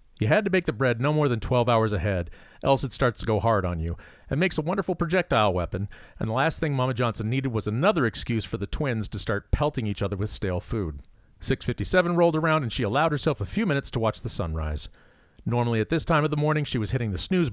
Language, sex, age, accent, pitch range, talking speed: English, male, 40-59, American, 100-145 Hz, 250 wpm